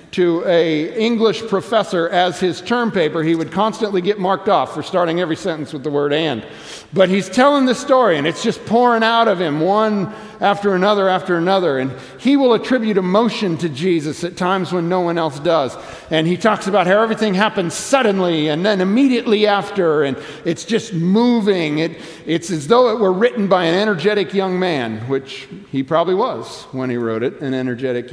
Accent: American